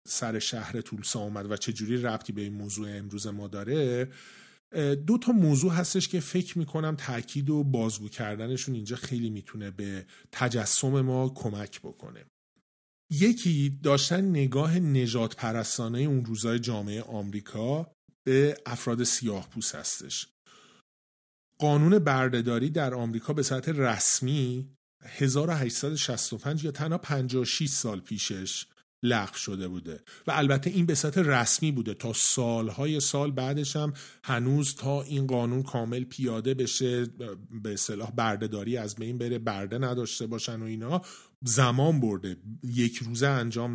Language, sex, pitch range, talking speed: Persian, male, 115-150 Hz, 130 wpm